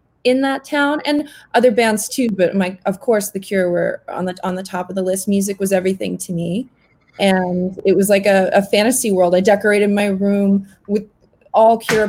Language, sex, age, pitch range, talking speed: English, female, 20-39, 185-225 Hz, 210 wpm